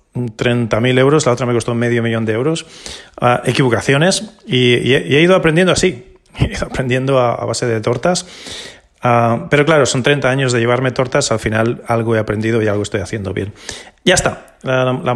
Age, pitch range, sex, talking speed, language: 30-49, 120-150 Hz, male, 185 wpm, Spanish